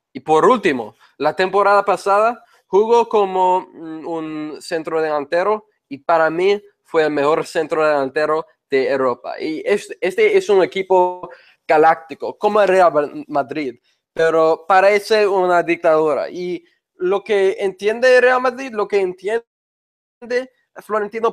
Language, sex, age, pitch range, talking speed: English, male, 20-39, 150-215 Hz, 130 wpm